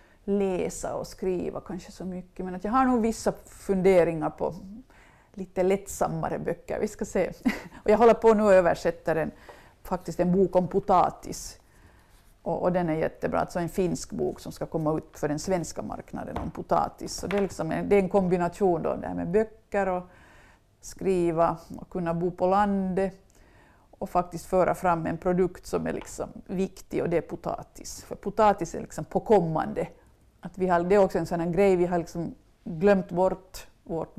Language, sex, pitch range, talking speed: Swedish, female, 170-200 Hz, 160 wpm